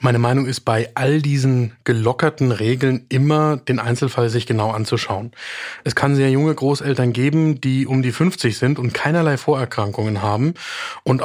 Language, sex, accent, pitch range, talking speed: German, male, German, 120-155 Hz, 160 wpm